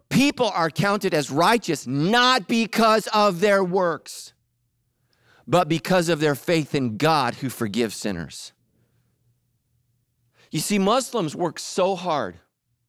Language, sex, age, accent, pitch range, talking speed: English, male, 40-59, American, 125-195 Hz, 120 wpm